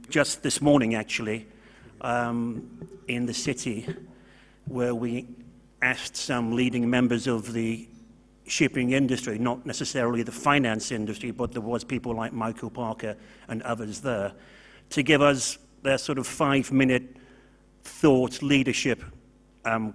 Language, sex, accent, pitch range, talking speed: English, male, British, 115-135 Hz, 130 wpm